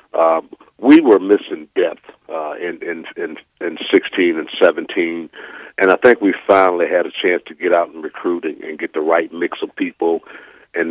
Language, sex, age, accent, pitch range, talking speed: English, male, 50-69, American, 320-410 Hz, 195 wpm